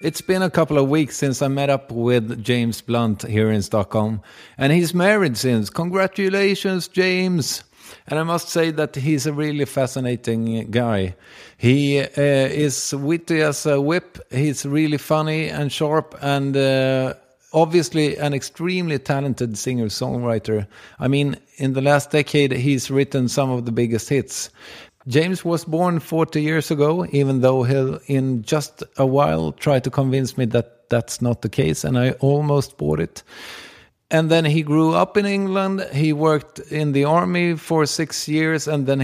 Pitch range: 125-155 Hz